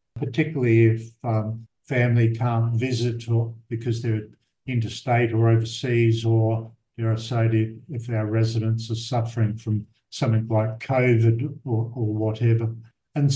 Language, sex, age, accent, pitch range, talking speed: English, male, 60-79, Australian, 115-140 Hz, 130 wpm